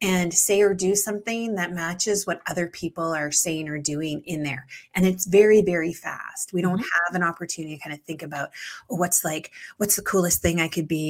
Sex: female